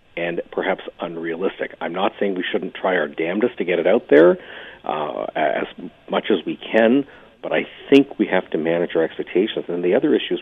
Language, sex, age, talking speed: English, male, 50-69, 215 wpm